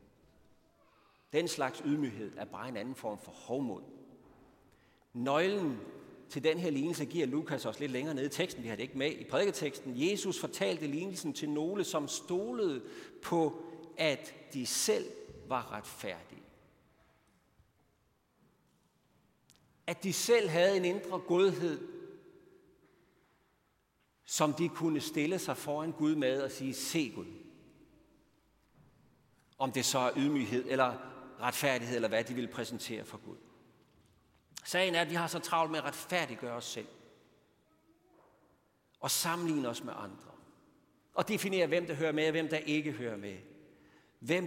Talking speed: 145 wpm